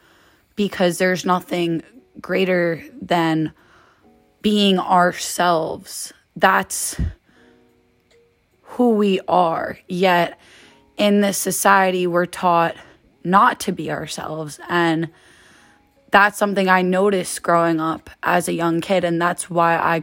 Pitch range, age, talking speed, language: 170-205 Hz, 20-39, 110 wpm, English